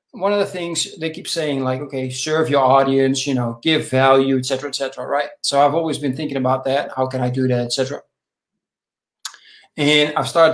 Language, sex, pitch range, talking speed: English, male, 130-160 Hz, 215 wpm